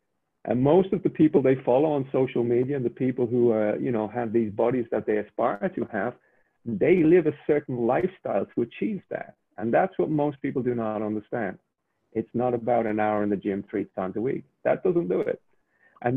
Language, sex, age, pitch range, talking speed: English, male, 40-59, 110-135 Hz, 215 wpm